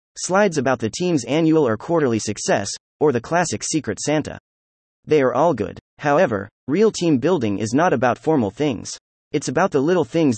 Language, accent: English, American